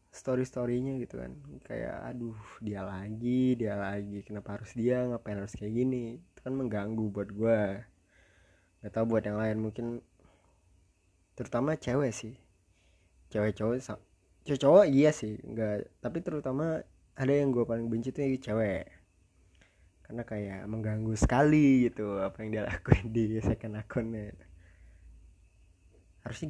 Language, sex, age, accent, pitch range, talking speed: Indonesian, male, 20-39, native, 100-130 Hz, 135 wpm